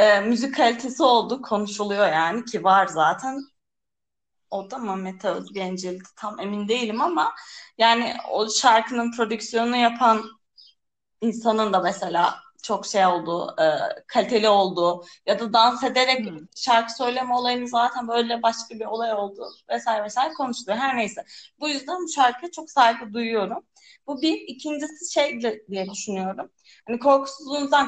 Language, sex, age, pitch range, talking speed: Turkish, female, 30-49, 220-270 Hz, 135 wpm